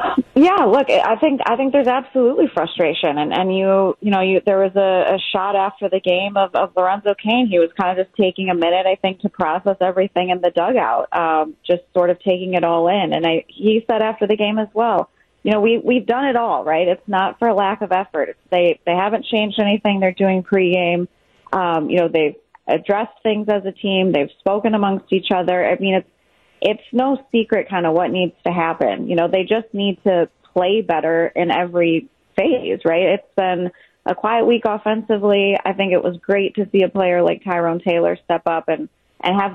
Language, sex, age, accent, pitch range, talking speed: English, female, 30-49, American, 180-215 Hz, 215 wpm